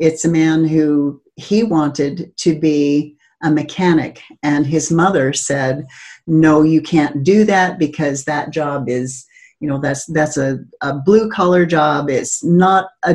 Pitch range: 150-190 Hz